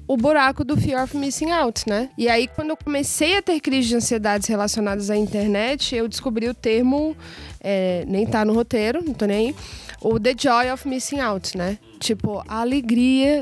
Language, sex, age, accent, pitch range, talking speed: Portuguese, female, 20-39, Brazilian, 220-280 Hz, 190 wpm